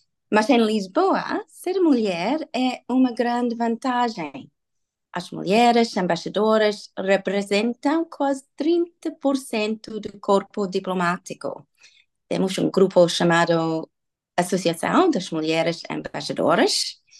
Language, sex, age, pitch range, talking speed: Portuguese, female, 30-49, 180-235 Hz, 90 wpm